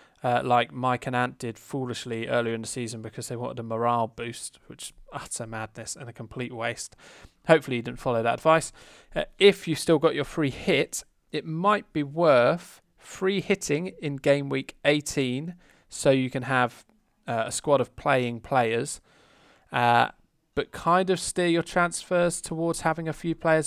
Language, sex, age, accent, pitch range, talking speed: English, male, 20-39, British, 120-150 Hz, 180 wpm